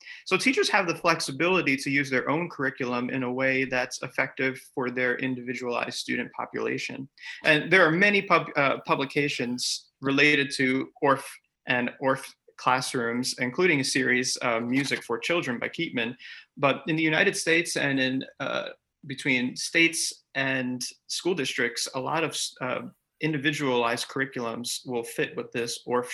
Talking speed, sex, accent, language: 150 wpm, male, American, English